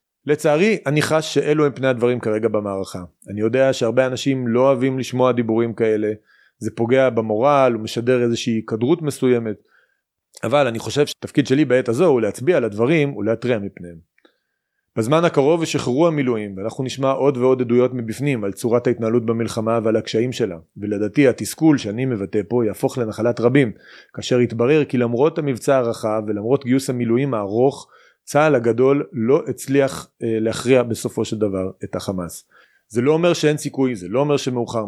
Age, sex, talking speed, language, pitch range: 30-49, male, 155 wpm, Hebrew, 115-135 Hz